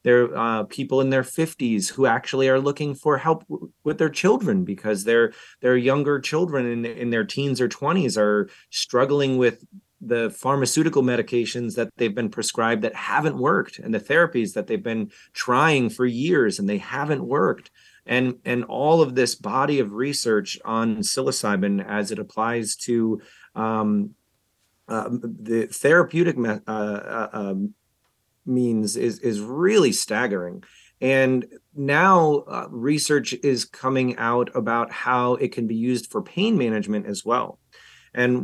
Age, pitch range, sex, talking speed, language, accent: 30-49, 115-145 Hz, male, 155 wpm, English, American